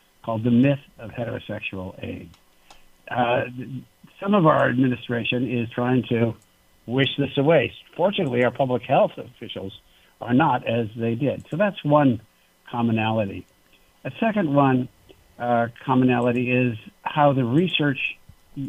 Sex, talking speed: male, 125 wpm